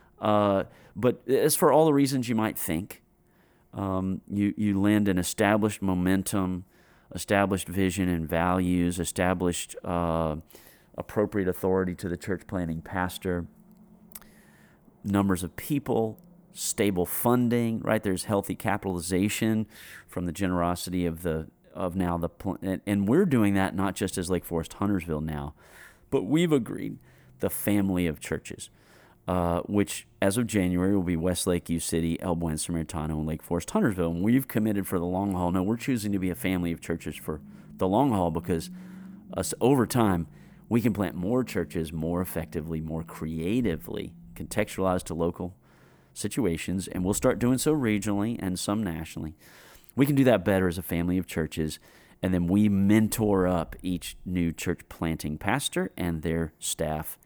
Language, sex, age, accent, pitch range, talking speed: English, male, 30-49, American, 85-105 Hz, 155 wpm